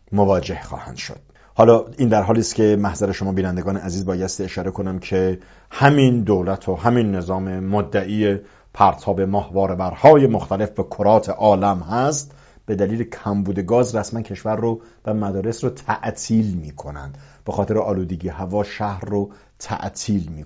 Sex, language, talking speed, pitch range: male, English, 150 wpm, 95-125 Hz